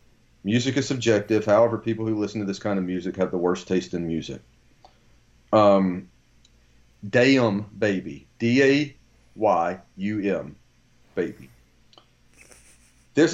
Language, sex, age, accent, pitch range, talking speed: English, male, 40-59, American, 95-120 Hz, 105 wpm